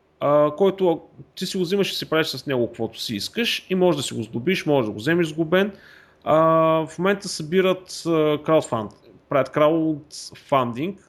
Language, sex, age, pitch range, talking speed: Bulgarian, male, 30-49, 120-175 Hz, 175 wpm